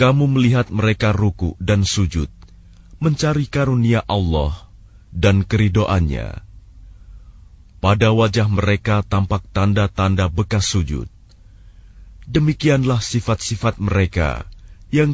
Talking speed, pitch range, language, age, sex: 85 wpm, 90-110 Hz, Arabic, 30-49, male